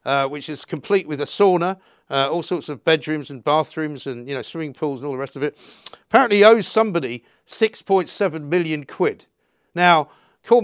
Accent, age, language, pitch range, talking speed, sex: British, 50-69, English, 145-195 Hz, 185 wpm, male